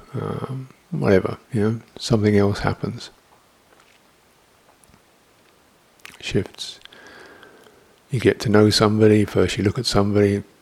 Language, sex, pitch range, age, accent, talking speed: English, male, 95-110 Hz, 50-69, British, 100 wpm